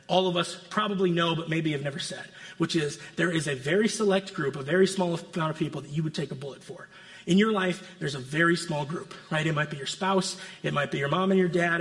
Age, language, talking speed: 30-49, English, 270 wpm